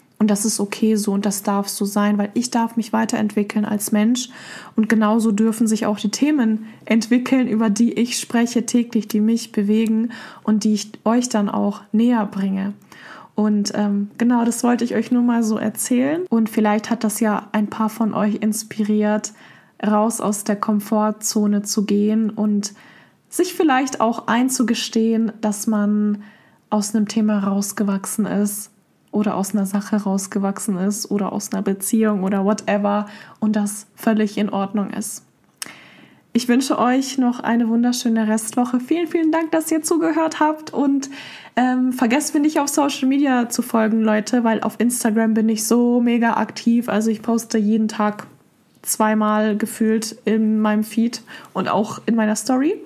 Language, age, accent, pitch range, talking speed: German, 20-39, German, 210-235 Hz, 165 wpm